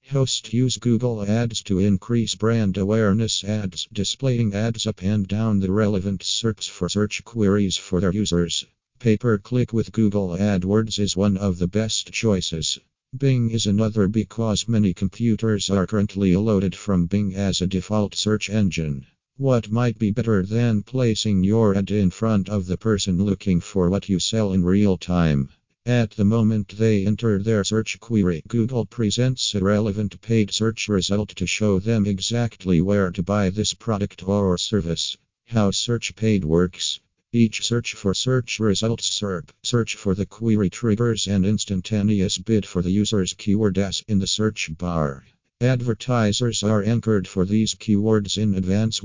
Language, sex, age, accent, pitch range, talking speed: English, male, 50-69, American, 95-110 Hz, 160 wpm